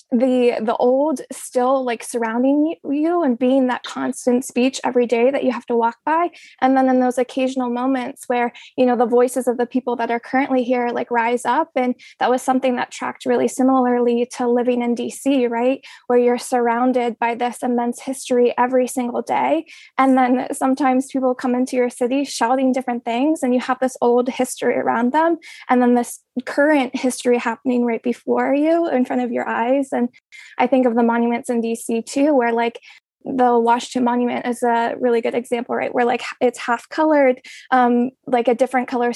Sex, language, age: female, English, 20-39